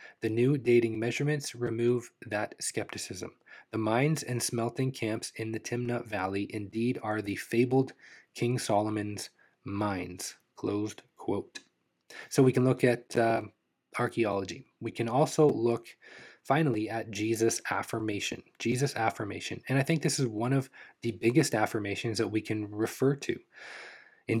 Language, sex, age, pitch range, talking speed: English, male, 20-39, 105-125 Hz, 145 wpm